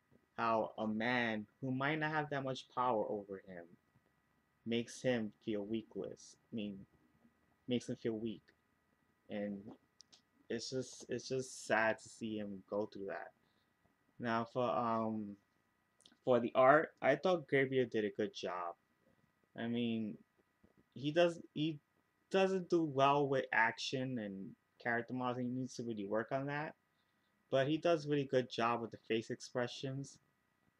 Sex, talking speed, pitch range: male, 150 wpm, 110-130 Hz